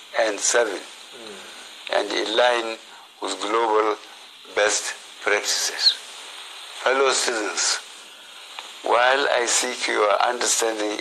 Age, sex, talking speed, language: 60-79, male, 85 wpm, English